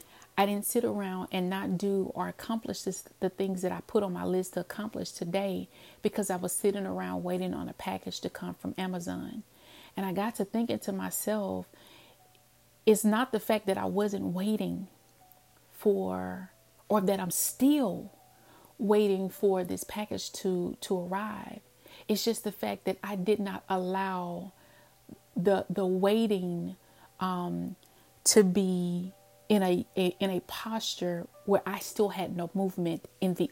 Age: 30-49